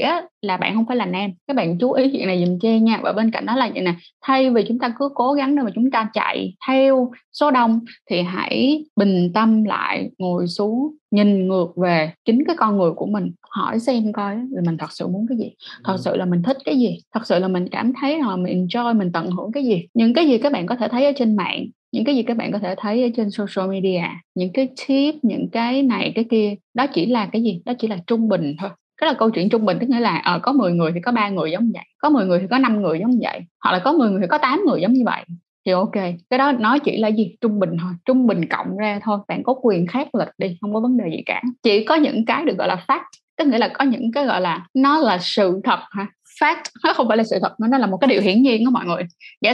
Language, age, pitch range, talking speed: Vietnamese, 20-39, 190-260 Hz, 280 wpm